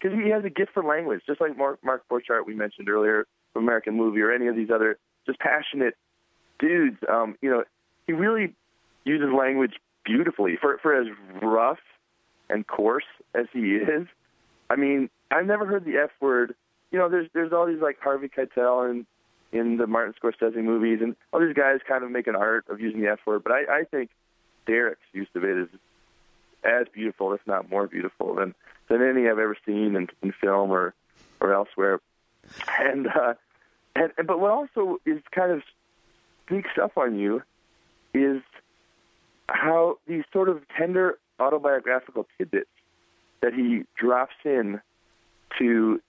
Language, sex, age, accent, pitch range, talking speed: English, male, 20-39, American, 115-175 Hz, 175 wpm